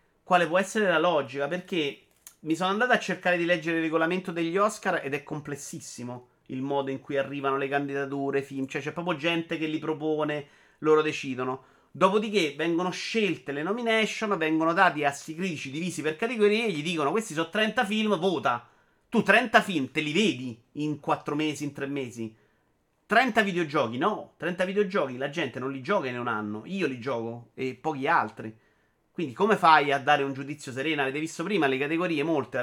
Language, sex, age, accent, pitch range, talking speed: Italian, male, 30-49, native, 135-190 Hz, 190 wpm